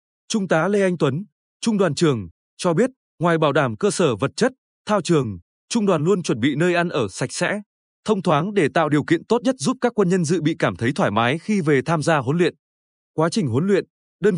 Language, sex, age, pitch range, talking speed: Vietnamese, male, 20-39, 145-200 Hz, 240 wpm